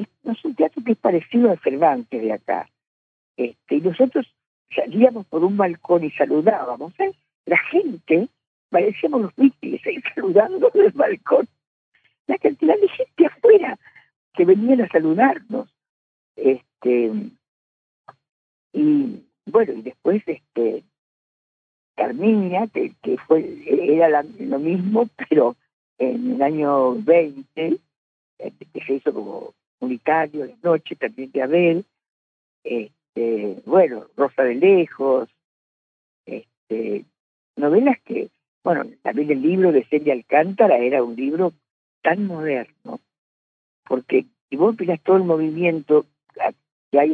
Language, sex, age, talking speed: Spanish, female, 50-69, 125 wpm